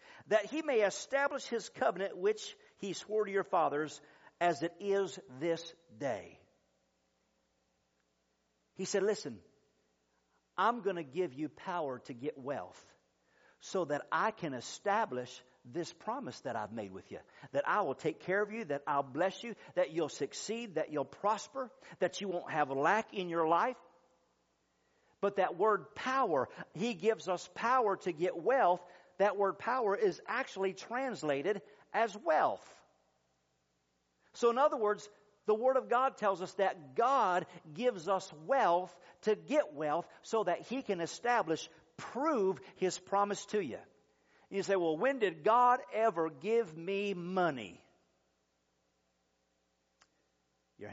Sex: male